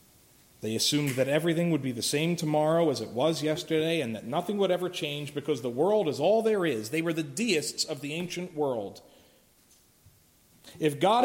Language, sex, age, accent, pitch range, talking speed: English, male, 40-59, American, 120-170 Hz, 190 wpm